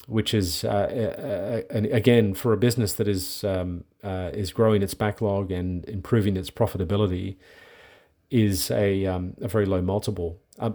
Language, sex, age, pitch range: English, male, 40-59, 95-110 Hz